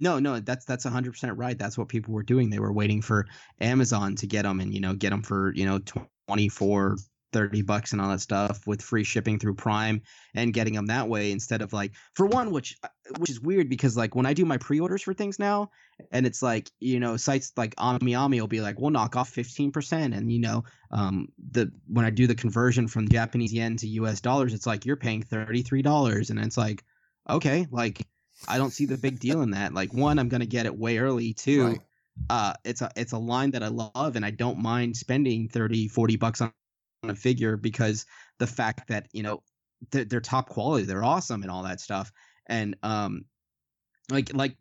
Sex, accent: male, American